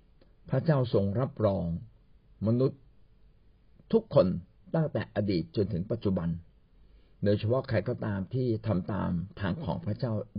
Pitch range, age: 105-145 Hz, 60-79